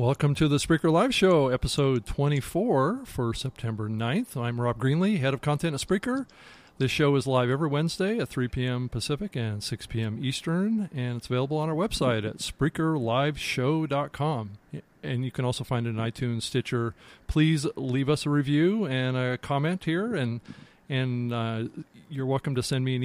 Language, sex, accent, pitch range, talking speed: English, male, American, 120-155 Hz, 175 wpm